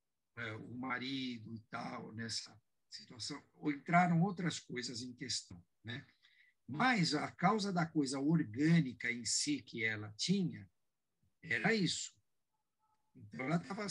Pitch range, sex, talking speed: 130-180 Hz, male, 125 wpm